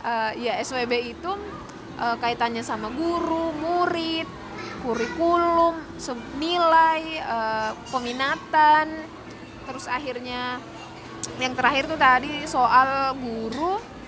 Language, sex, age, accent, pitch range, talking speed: Indonesian, female, 20-39, native, 245-300 Hz, 90 wpm